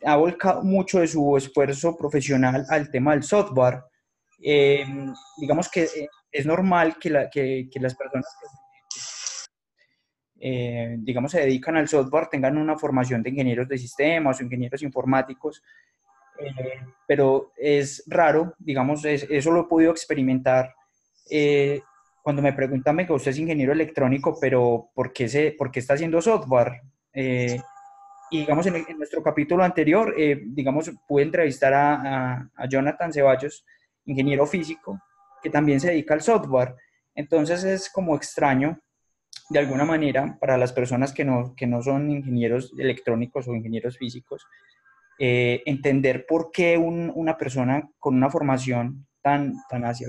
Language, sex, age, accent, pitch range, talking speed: Spanish, male, 20-39, Colombian, 130-160 Hz, 155 wpm